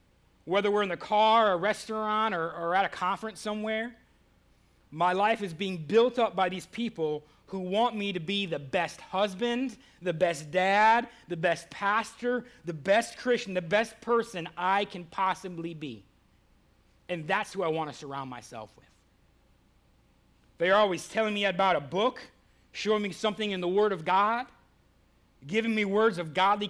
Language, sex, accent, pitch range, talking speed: English, male, American, 155-215 Hz, 170 wpm